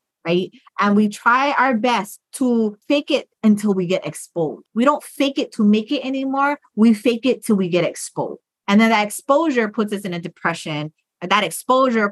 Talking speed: 195 wpm